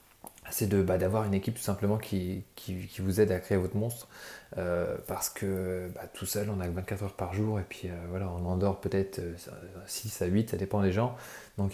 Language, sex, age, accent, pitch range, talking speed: French, male, 20-39, French, 95-110 Hz, 230 wpm